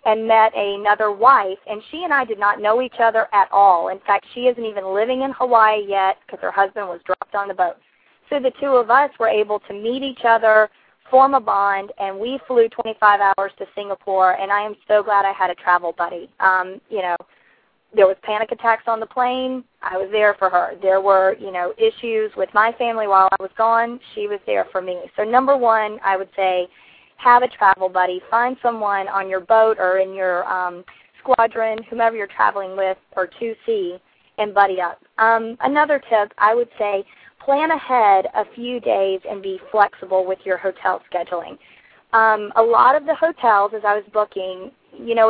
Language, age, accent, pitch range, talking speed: English, 40-59, American, 195-235 Hz, 205 wpm